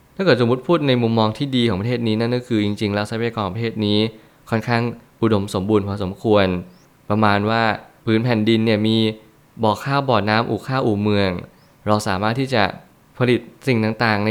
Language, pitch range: Thai, 105-120 Hz